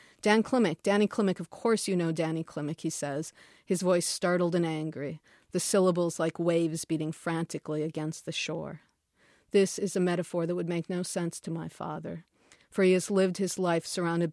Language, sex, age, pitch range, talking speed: English, female, 40-59, 160-185 Hz, 190 wpm